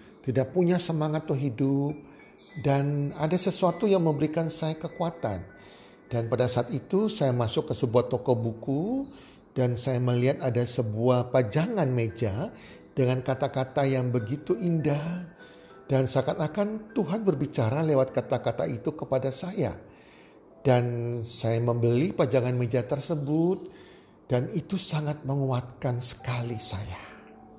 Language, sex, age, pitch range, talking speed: Indonesian, male, 50-69, 120-155 Hz, 120 wpm